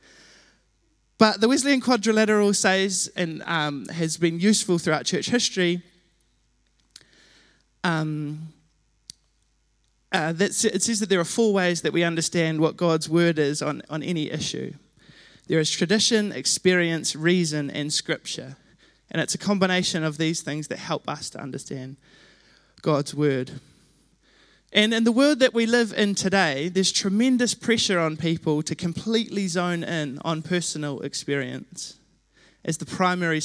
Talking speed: 140 wpm